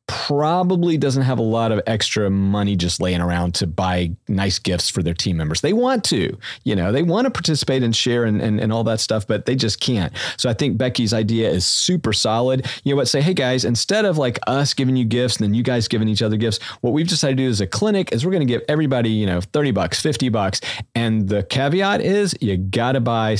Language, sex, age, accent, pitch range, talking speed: English, male, 40-59, American, 100-135 Hz, 250 wpm